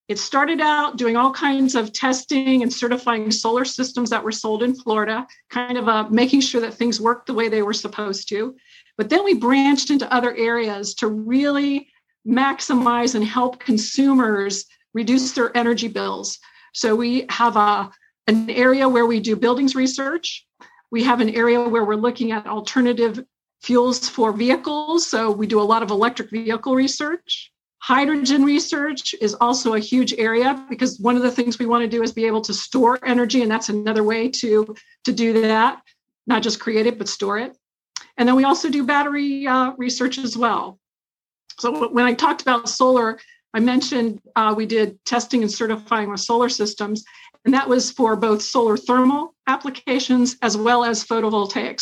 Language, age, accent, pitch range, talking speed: English, 50-69, American, 220-260 Hz, 180 wpm